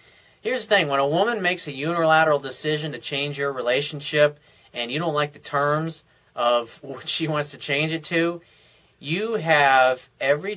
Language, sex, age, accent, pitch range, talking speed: English, male, 30-49, American, 125-165 Hz, 175 wpm